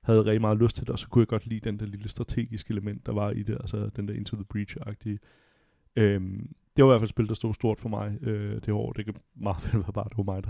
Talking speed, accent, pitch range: 295 wpm, native, 105-115 Hz